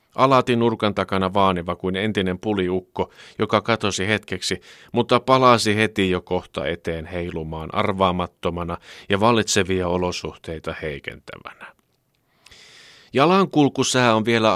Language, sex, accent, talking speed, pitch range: Finnish, male, native, 105 wpm, 90-115 Hz